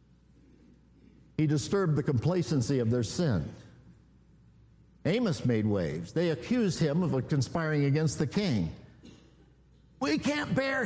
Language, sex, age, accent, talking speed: English, male, 50-69, American, 115 wpm